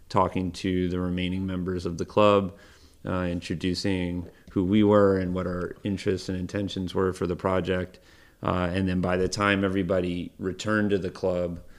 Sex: male